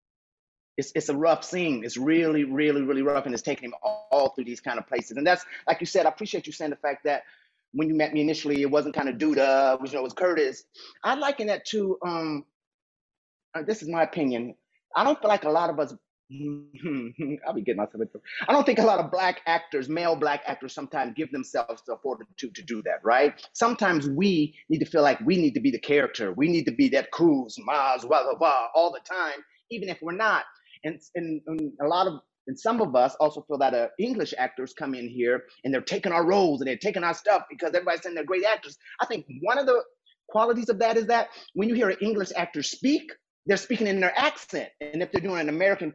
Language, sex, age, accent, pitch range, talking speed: English, male, 30-49, American, 150-230 Hz, 240 wpm